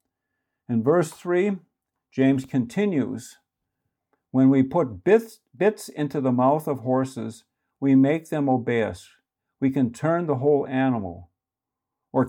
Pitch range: 115-145 Hz